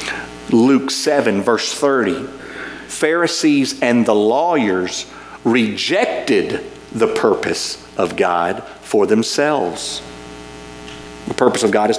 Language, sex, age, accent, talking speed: English, male, 50-69, American, 100 wpm